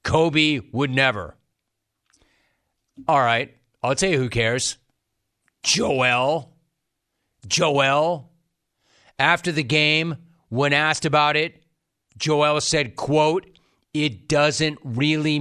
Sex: male